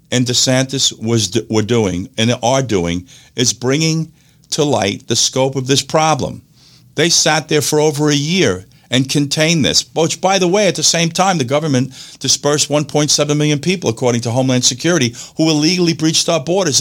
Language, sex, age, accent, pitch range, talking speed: English, male, 50-69, American, 120-155 Hz, 180 wpm